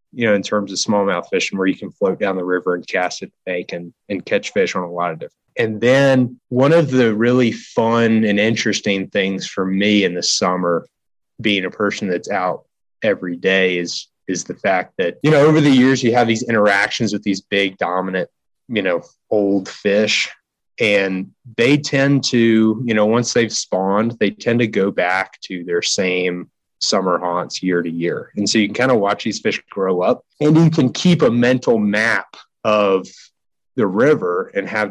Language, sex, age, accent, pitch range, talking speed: English, male, 20-39, American, 95-120 Hz, 200 wpm